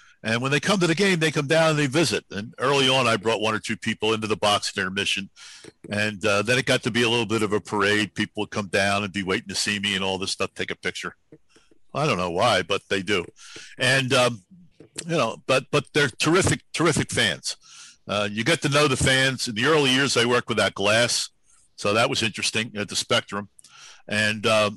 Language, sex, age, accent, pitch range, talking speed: English, male, 60-79, American, 105-135 Hz, 240 wpm